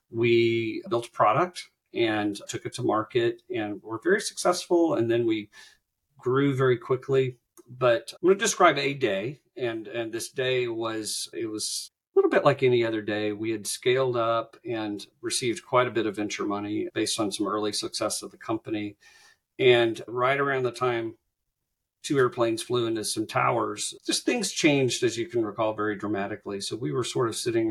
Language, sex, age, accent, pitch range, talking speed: English, male, 40-59, American, 110-140 Hz, 185 wpm